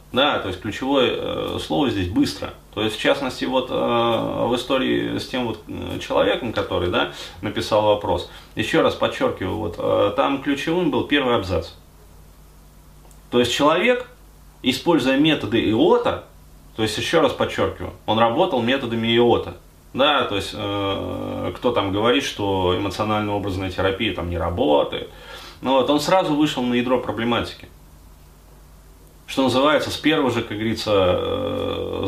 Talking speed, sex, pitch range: 145 wpm, male, 85-135 Hz